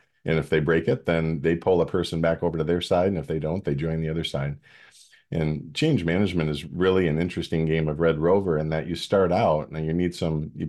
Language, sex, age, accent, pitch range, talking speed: English, male, 40-59, American, 75-90 Hz, 255 wpm